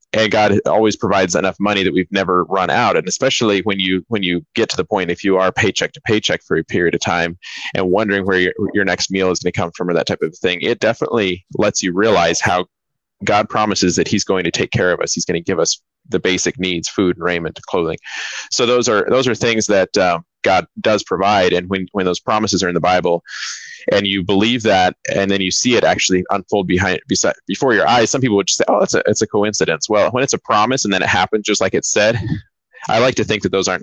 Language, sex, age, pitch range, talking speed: English, male, 20-39, 90-105 Hz, 250 wpm